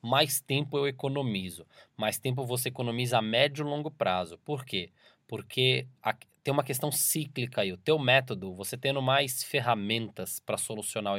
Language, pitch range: Portuguese, 110-130 Hz